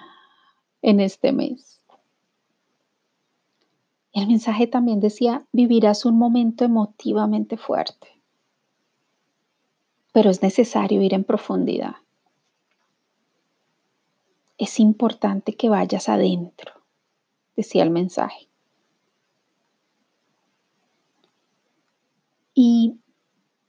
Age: 30-49